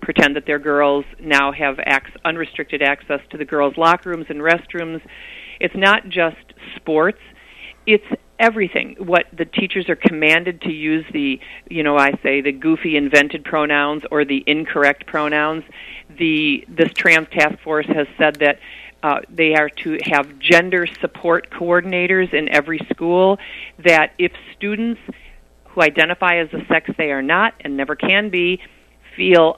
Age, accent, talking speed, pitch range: 50-69, American, 160 wpm, 155-185 Hz